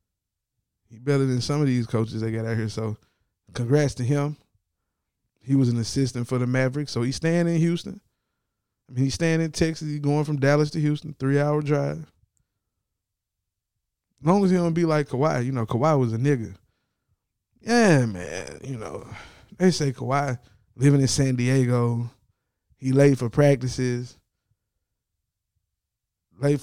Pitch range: 110-150 Hz